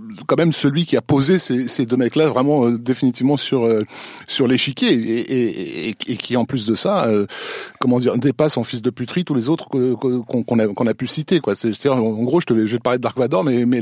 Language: French